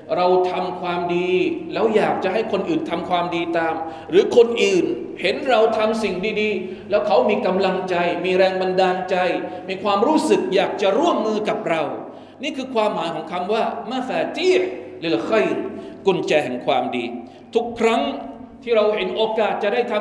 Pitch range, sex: 180-250 Hz, male